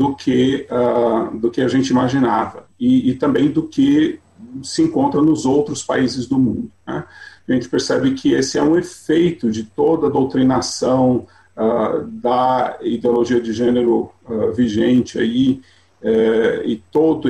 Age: 40-59